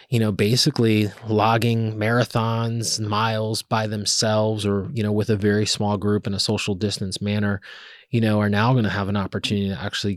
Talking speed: 190 wpm